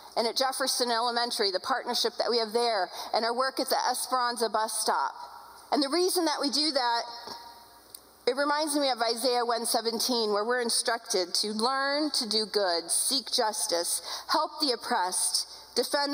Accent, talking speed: American, 165 wpm